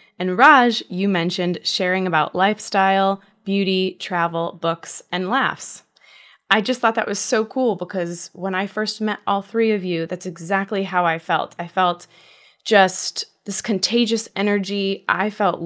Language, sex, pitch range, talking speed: English, female, 170-200 Hz, 155 wpm